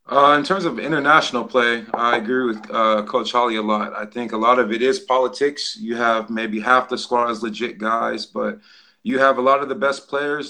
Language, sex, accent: English, male, American